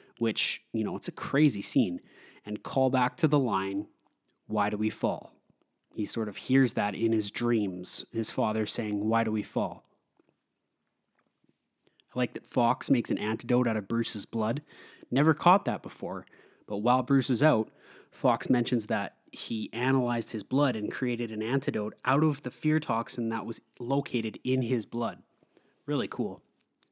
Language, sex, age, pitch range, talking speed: English, male, 20-39, 110-130 Hz, 170 wpm